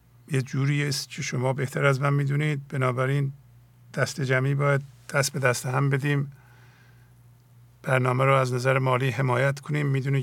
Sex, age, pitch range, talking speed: male, 50-69, 120-135 Hz, 155 wpm